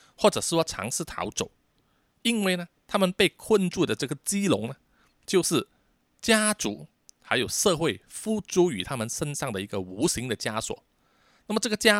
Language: Chinese